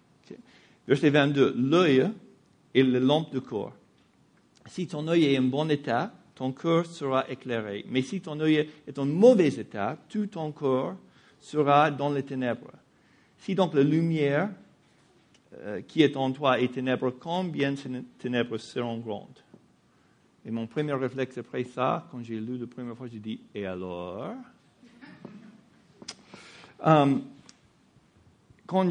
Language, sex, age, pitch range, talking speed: English, male, 50-69, 125-160 Hz, 150 wpm